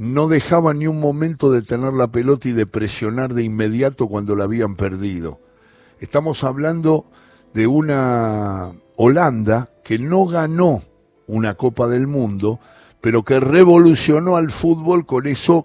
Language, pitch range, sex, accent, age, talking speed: Spanish, 105-145 Hz, male, Argentinian, 60-79, 140 wpm